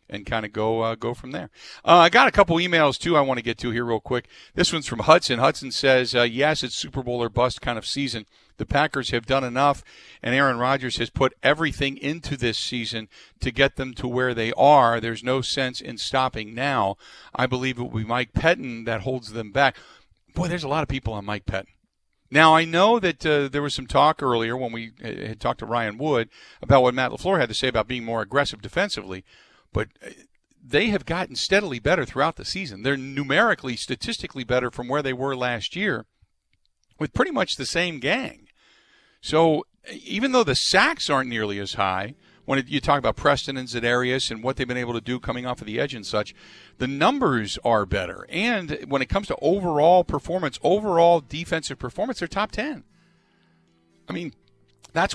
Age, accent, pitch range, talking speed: 50-69, American, 115-145 Hz, 205 wpm